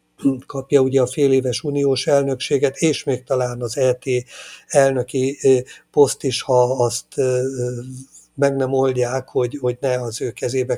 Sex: male